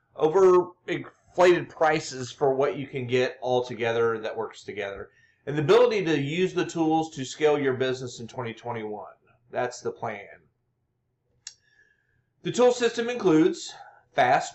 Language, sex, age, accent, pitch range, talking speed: English, male, 40-59, American, 125-170 Hz, 140 wpm